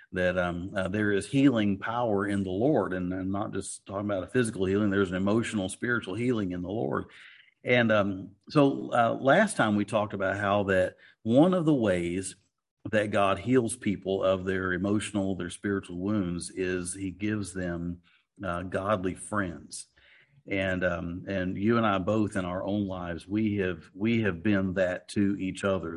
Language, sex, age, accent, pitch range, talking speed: English, male, 50-69, American, 90-105 Hz, 185 wpm